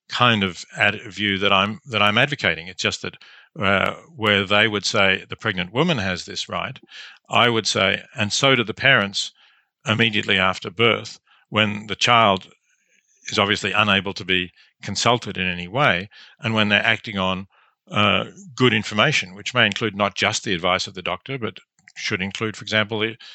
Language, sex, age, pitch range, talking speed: English, male, 50-69, 100-115 Hz, 175 wpm